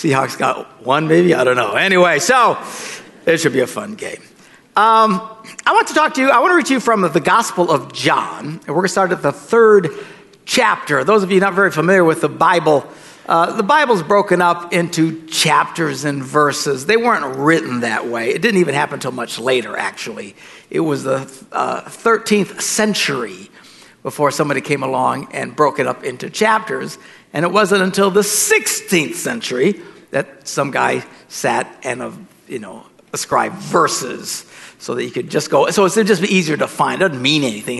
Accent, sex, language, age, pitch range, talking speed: American, male, English, 60-79, 145-210 Hz, 195 wpm